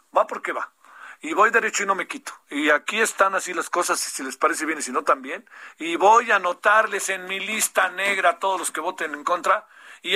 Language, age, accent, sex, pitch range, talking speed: Spanish, 50-69, Mexican, male, 180-245 Hz, 240 wpm